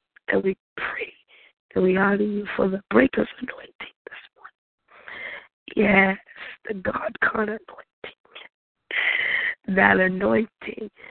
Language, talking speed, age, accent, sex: English, 115 wpm, 20-39, American, female